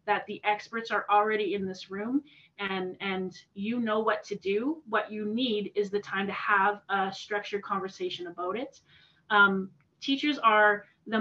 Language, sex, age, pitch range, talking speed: English, female, 30-49, 200-225 Hz, 165 wpm